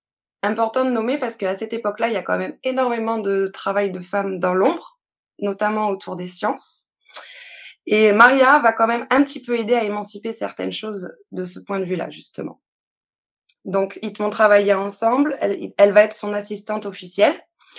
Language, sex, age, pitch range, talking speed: French, female, 20-39, 195-240 Hz, 180 wpm